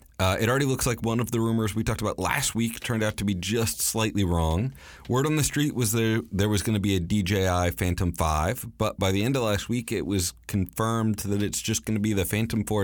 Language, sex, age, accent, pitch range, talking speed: English, male, 30-49, American, 85-110 Hz, 255 wpm